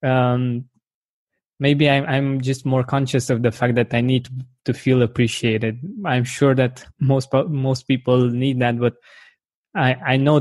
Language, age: English, 20-39